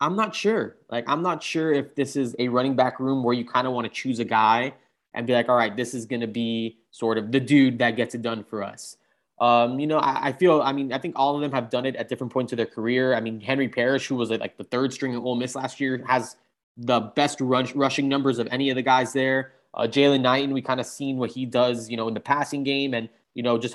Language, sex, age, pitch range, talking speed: English, male, 20-39, 120-140 Hz, 285 wpm